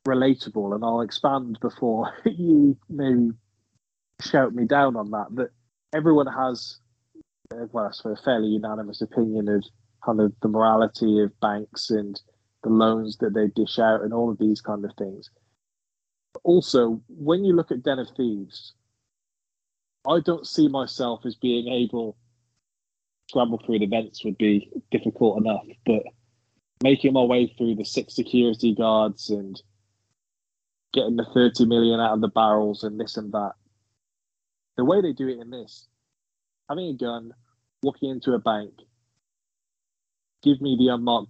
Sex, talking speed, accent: male, 155 wpm, British